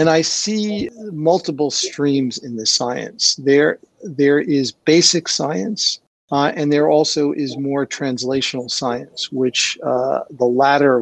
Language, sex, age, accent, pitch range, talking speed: English, male, 50-69, American, 130-155 Hz, 135 wpm